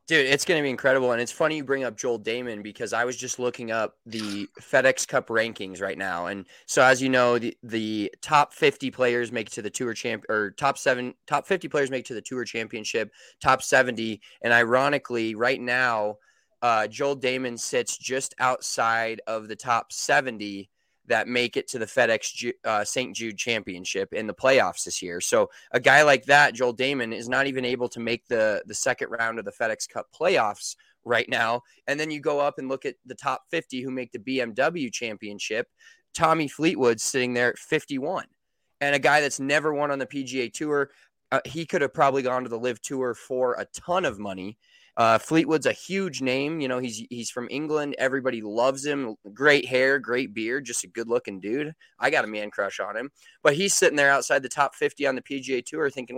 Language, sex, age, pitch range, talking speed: English, male, 20-39, 115-145 Hz, 215 wpm